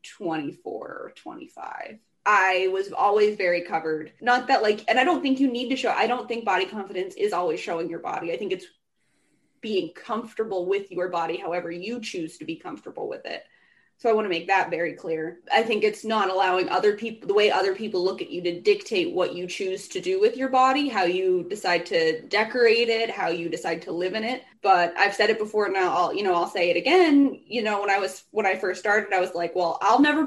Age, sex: 20-39, female